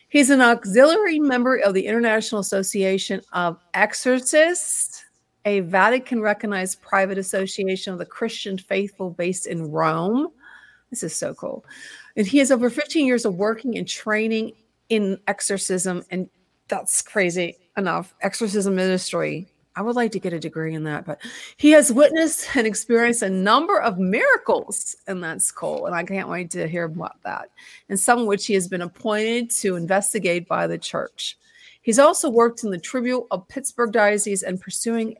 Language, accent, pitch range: English, American, 185-240 Hz